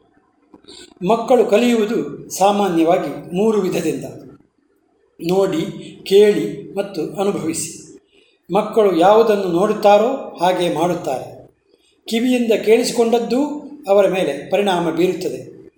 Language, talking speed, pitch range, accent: Kannada, 75 wpm, 175-230 Hz, native